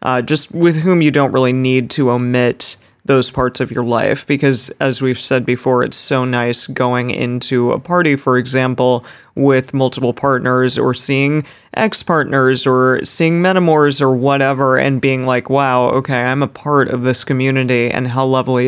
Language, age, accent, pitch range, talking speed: English, 30-49, American, 130-145 Hz, 175 wpm